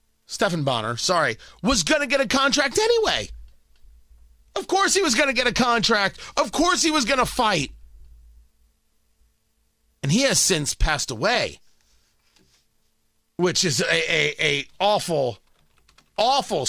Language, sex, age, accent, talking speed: English, male, 40-59, American, 130 wpm